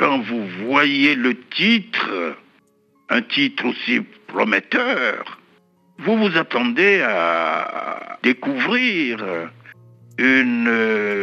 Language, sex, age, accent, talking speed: French, male, 60-79, French, 80 wpm